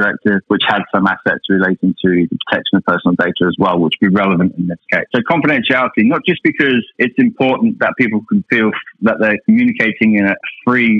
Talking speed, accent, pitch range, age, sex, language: 205 wpm, British, 95-115 Hz, 30-49, male, English